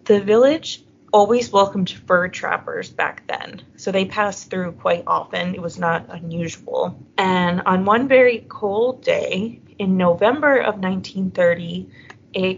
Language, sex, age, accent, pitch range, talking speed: English, female, 20-39, American, 180-230 Hz, 135 wpm